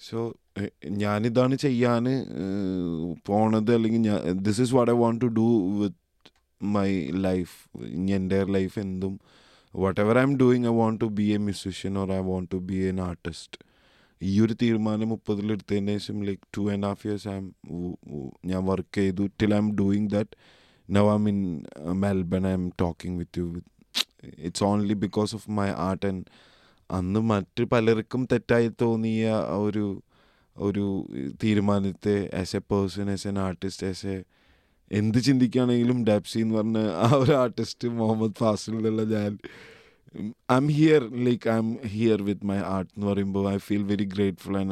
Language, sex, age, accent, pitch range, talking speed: Malayalam, male, 20-39, native, 95-110 Hz, 155 wpm